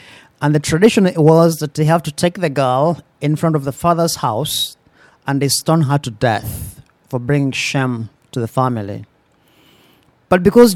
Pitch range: 130-165 Hz